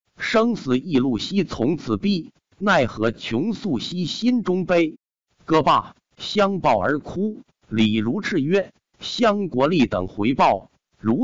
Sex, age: male, 50-69